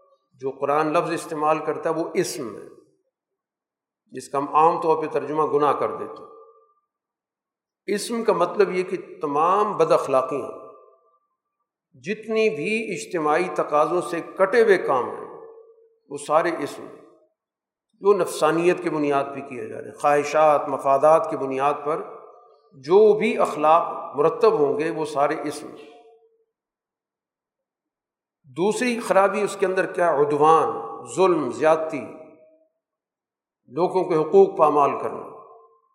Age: 50-69